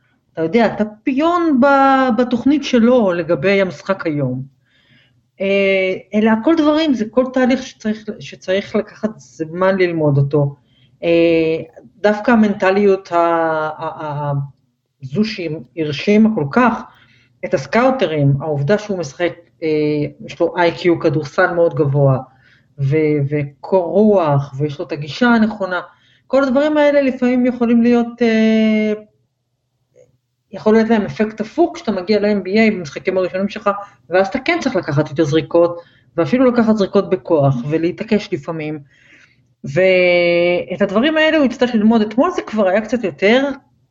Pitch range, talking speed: 150-220 Hz, 120 wpm